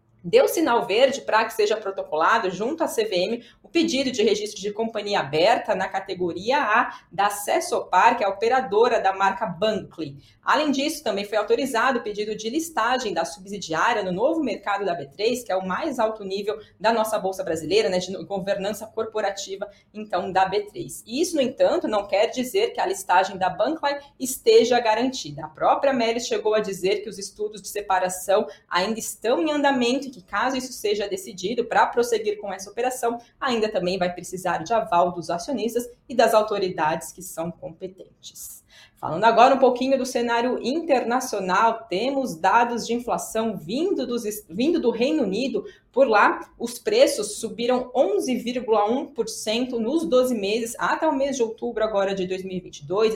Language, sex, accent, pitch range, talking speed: Portuguese, female, Brazilian, 195-255 Hz, 165 wpm